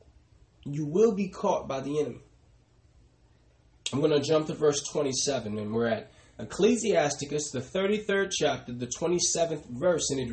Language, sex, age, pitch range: English, male, 20-39, 110-165 Hz